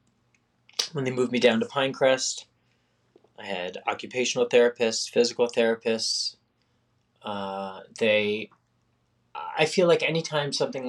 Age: 20-39